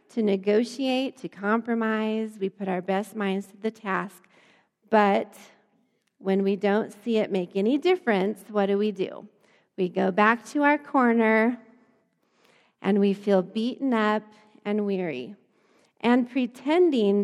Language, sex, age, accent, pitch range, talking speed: English, female, 40-59, American, 195-225 Hz, 140 wpm